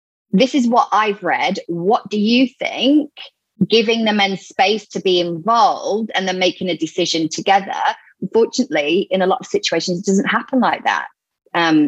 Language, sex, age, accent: English, female, 30-49, British